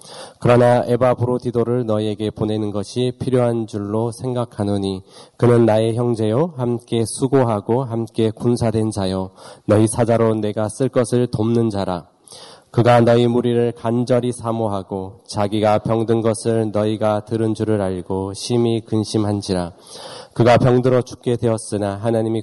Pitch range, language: 105-120 Hz, Korean